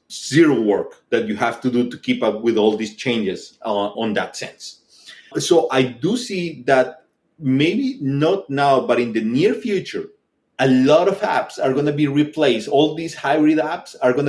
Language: English